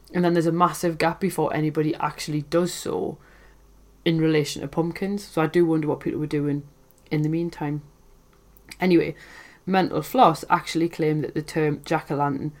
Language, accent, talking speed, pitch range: English, British, 165 wpm, 145-170 Hz